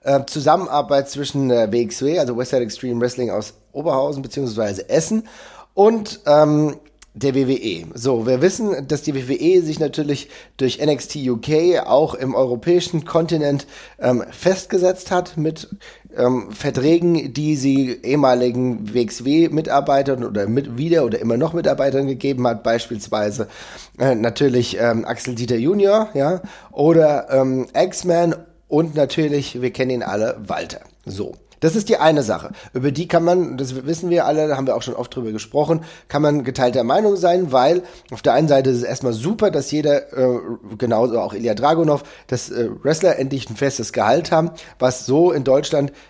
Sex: male